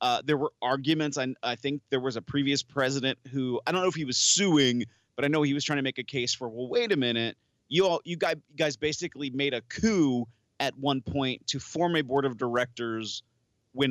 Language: English